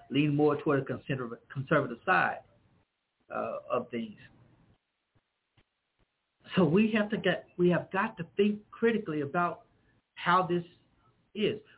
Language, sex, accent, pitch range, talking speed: English, male, American, 185-255 Hz, 125 wpm